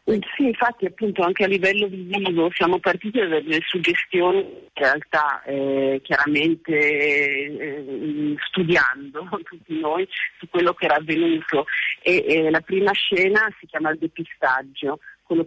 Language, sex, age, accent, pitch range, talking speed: Italian, female, 50-69, native, 145-170 Hz, 140 wpm